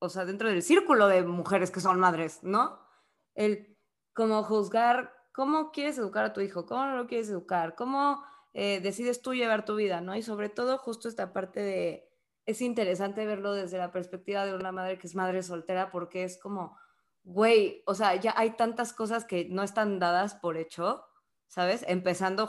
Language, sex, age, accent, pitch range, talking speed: Spanish, female, 20-39, Mexican, 175-245 Hz, 190 wpm